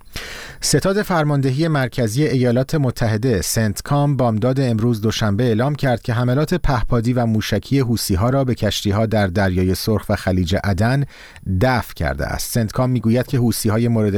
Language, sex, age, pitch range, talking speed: Persian, male, 40-59, 105-130 Hz, 150 wpm